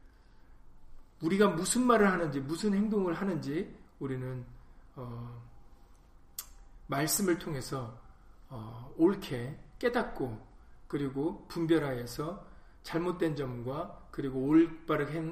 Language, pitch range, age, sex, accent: Korean, 135-175 Hz, 40-59, male, native